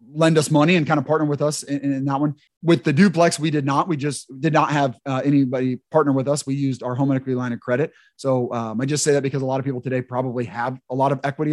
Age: 30-49